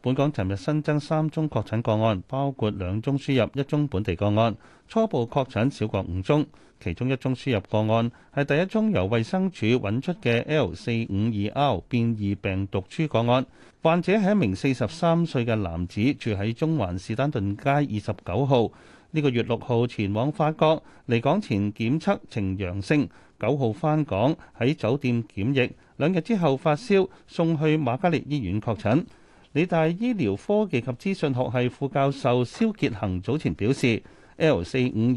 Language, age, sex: Chinese, 30-49, male